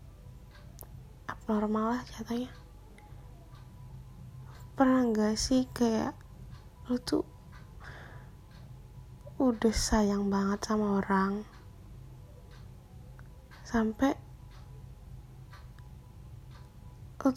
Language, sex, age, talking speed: Indonesian, female, 20-39, 55 wpm